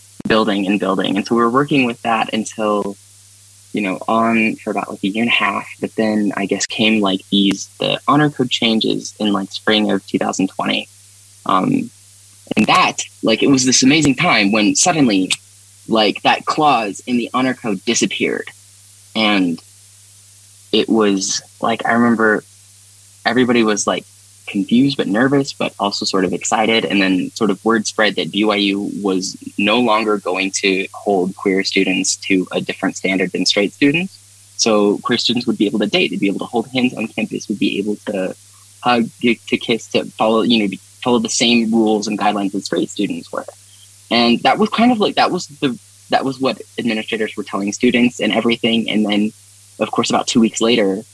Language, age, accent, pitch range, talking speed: English, 20-39, American, 100-115 Hz, 190 wpm